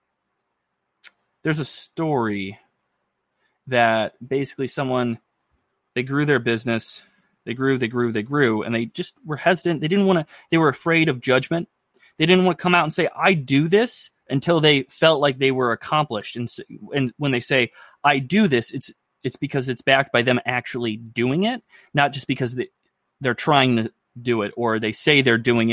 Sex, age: male, 20-39